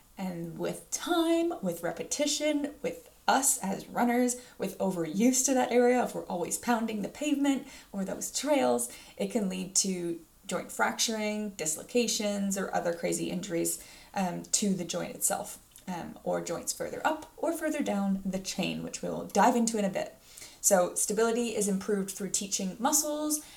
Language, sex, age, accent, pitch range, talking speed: English, female, 20-39, American, 185-240 Hz, 160 wpm